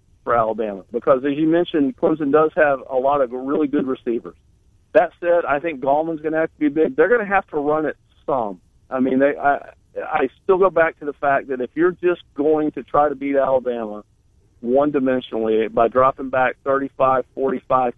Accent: American